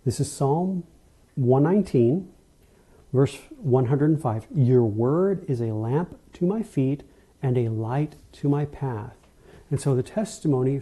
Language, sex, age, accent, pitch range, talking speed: English, male, 50-69, American, 130-170 Hz, 135 wpm